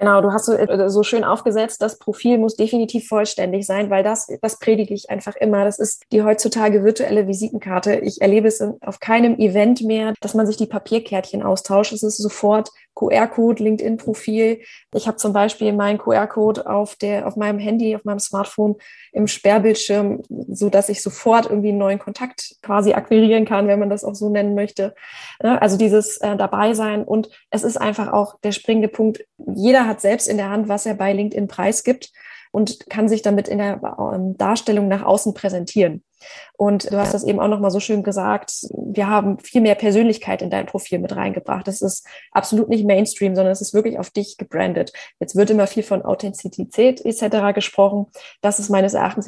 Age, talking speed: 20-39, 190 wpm